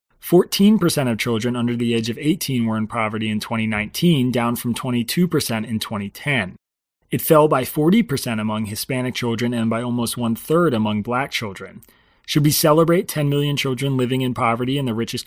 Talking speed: 170 wpm